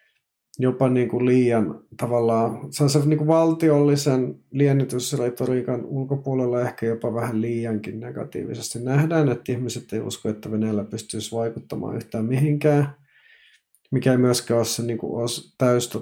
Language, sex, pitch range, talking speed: Finnish, male, 110-125 Hz, 140 wpm